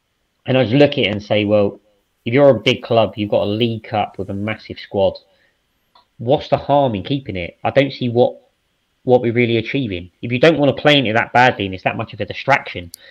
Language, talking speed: English, 245 wpm